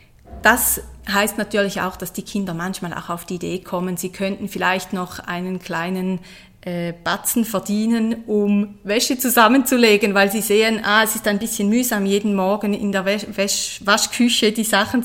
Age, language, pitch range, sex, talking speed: 30-49, German, 180-220 Hz, female, 170 wpm